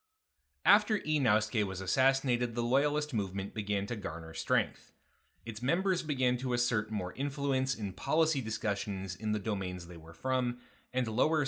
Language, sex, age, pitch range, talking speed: English, male, 30-49, 100-135 Hz, 150 wpm